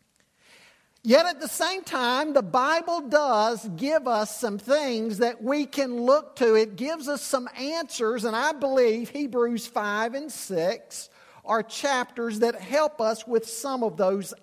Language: English